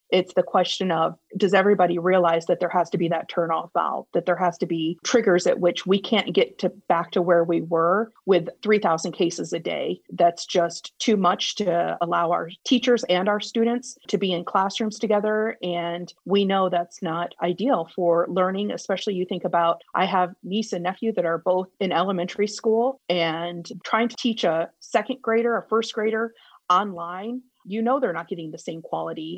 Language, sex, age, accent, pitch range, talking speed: English, female, 40-59, American, 170-200 Hz, 195 wpm